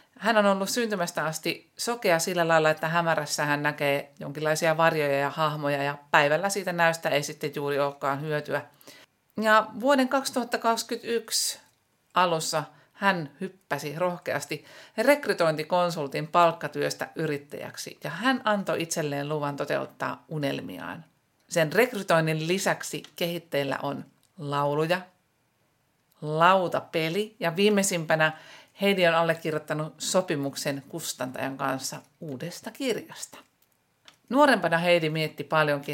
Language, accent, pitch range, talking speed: Finnish, native, 145-185 Hz, 105 wpm